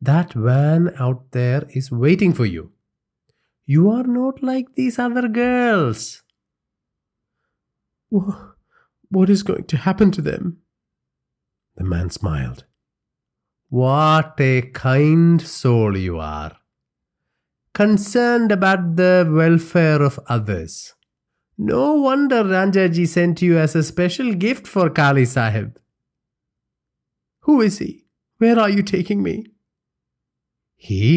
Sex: male